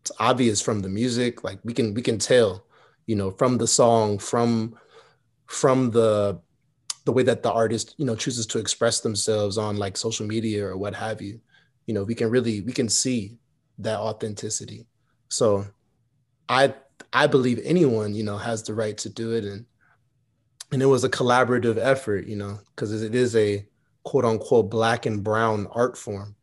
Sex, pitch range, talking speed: male, 105-125 Hz, 185 wpm